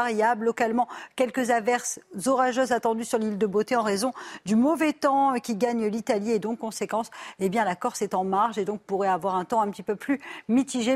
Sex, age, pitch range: female, 40-59, 220-265 Hz